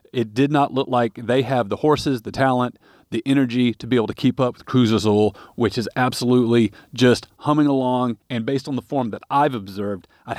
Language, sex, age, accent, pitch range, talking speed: English, male, 40-59, American, 115-135 Hz, 215 wpm